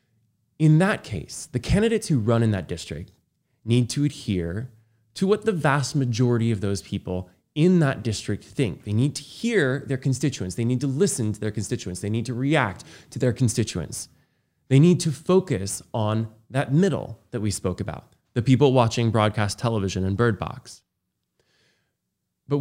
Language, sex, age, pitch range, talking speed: English, male, 20-39, 105-140 Hz, 175 wpm